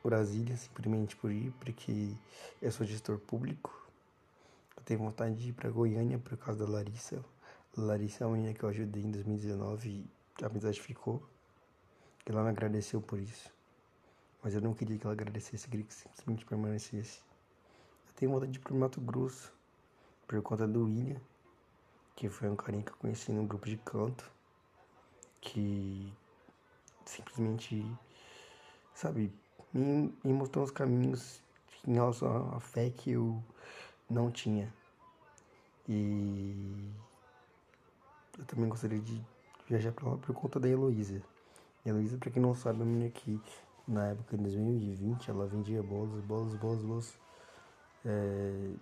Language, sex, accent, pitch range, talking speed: Portuguese, male, Brazilian, 105-120 Hz, 145 wpm